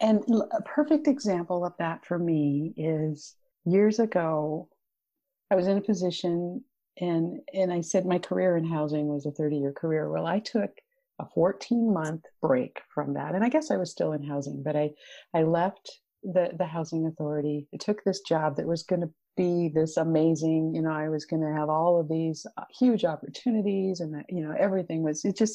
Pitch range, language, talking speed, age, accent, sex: 150-190 Hz, English, 195 wpm, 50-69, American, female